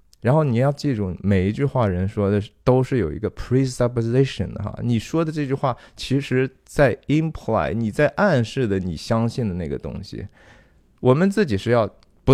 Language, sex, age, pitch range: Chinese, male, 20-39, 95-130 Hz